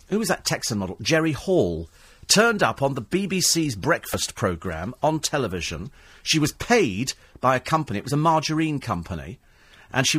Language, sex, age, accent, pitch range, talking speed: English, male, 40-59, British, 115-170 Hz, 170 wpm